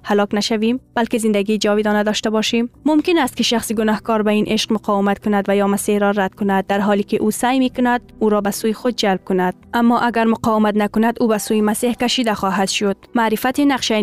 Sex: female